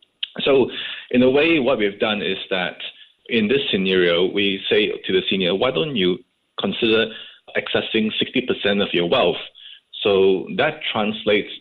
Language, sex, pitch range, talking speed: English, male, 100-145 Hz, 150 wpm